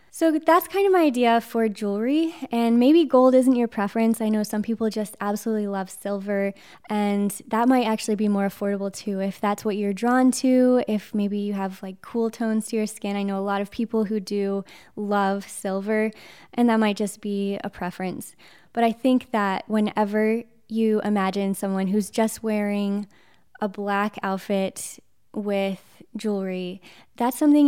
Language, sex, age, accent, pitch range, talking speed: English, female, 10-29, American, 200-235 Hz, 175 wpm